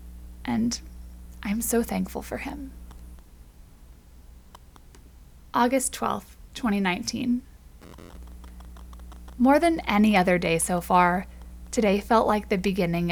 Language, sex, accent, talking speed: English, female, American, 95 wpm